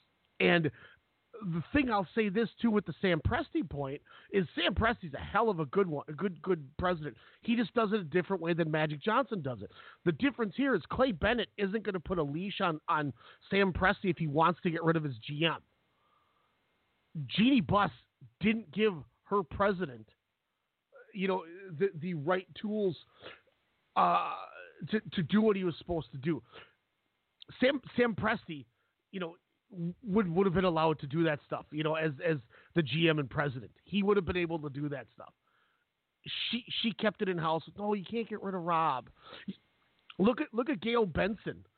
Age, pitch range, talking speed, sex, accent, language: 40-59, 160-205 Hz, 190 wpm, male, American, English